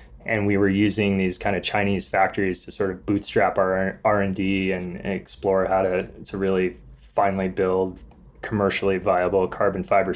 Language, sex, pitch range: English, male, 90-100 Hz